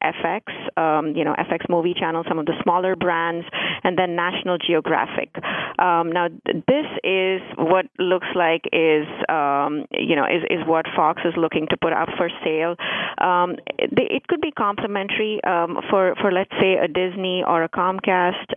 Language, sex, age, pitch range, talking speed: English, female, 30-49, 165-185 Hz, 180 wpm